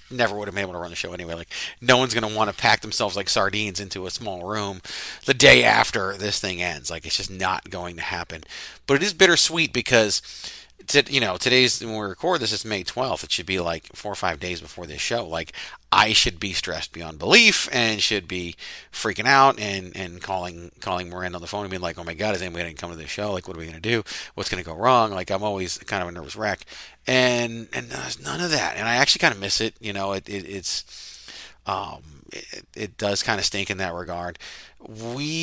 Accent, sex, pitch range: American, male, 95-120 Hz